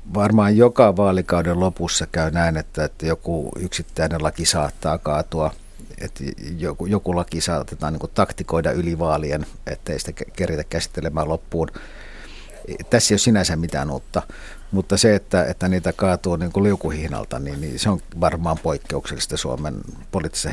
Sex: male